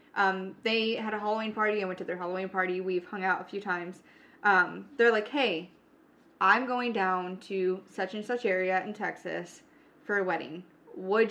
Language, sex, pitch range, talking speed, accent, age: English, female, 190-255 Hz, 190 wpm, American, 20-39